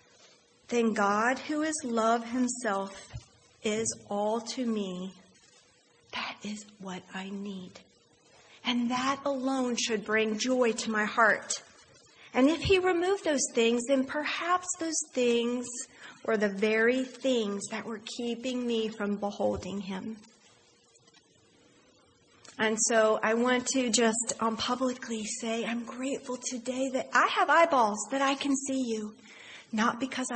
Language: English